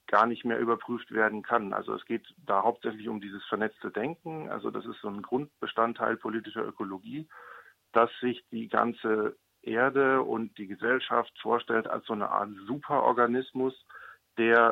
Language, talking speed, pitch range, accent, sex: German, 155 wpm, 105-120 Hz, German, male